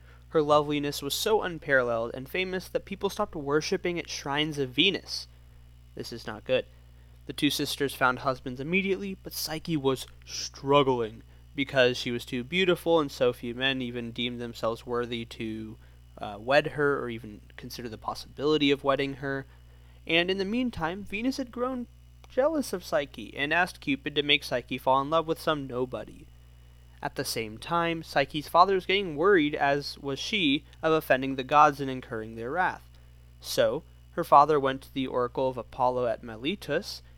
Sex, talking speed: male, 175 wpm